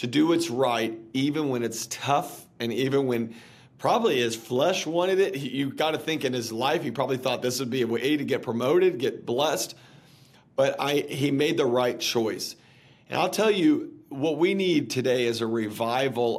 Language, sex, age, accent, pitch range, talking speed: English, male, 40-59, American, 115-145 Hz, 190 wpm